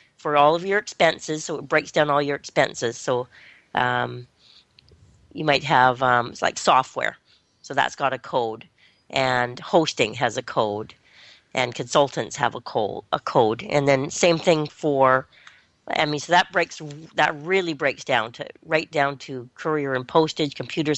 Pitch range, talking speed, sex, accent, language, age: 140-170 Hz, 165 wpm, female, American, English, 40-59